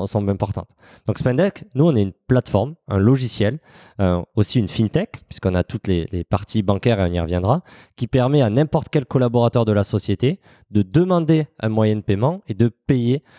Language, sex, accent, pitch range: French, male, French, 100-130 Hz